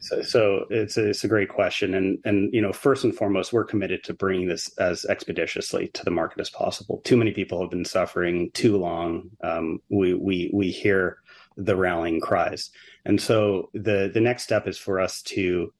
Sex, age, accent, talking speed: male, 30-49, American, 200 wpm